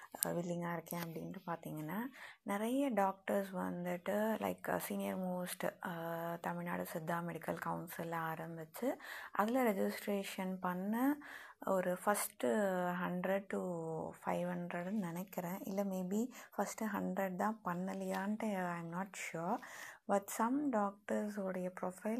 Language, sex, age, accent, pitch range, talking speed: Tamil, female, 20-39, native, 180-225 Hz, 100 wpm